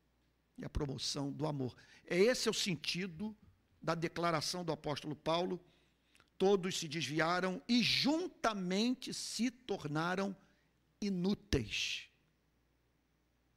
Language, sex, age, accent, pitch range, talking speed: Portuguese, male, 50-69, Brazilian, 140-205 Hz, 100 wpm